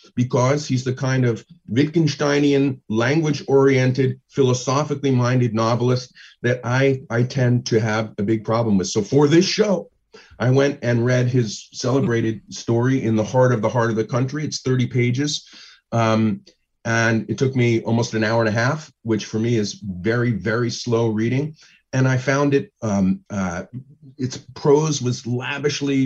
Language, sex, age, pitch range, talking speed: English, male, 40-59, 115-145 Hz, 165 wpm